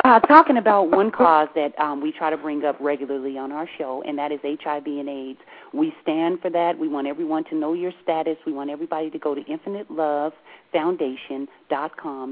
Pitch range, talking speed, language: 140-175 Hz, 195 wpm, English